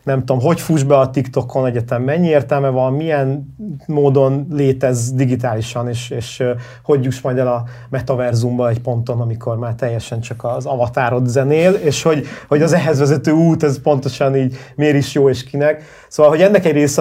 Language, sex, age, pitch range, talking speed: Hungarian, male, 30-49, 125-150 Hz, 185 wpm